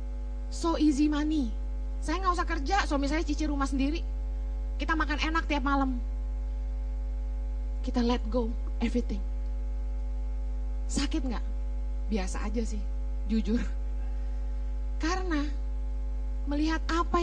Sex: female